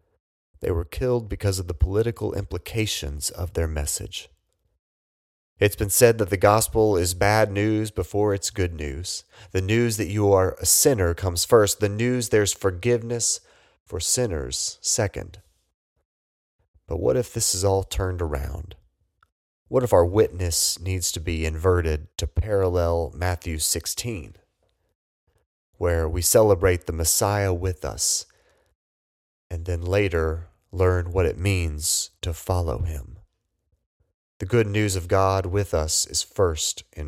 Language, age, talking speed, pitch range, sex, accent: English, 30-49, 140 wpm, 85-100 Hz, male, American